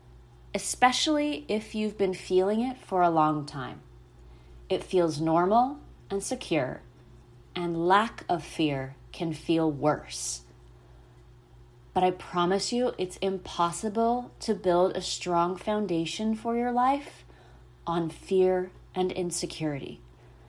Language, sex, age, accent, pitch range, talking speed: English, female, 30-49, American, 150-215 Hz, 115 wpm